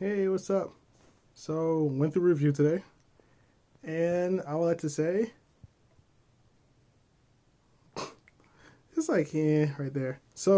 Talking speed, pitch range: 115 wpm, 130-155 Hz